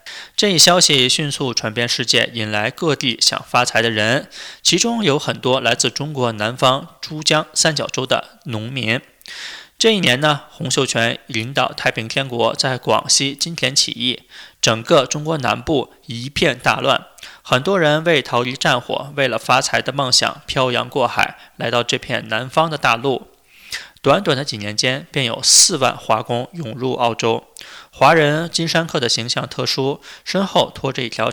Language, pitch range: Chinese, 120-155 Hz